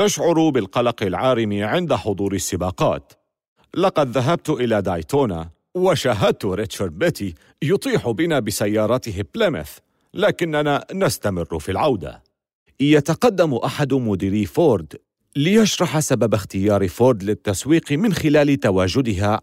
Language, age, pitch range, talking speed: Arabic, 50-69, 100-160 Hz, 100 wpm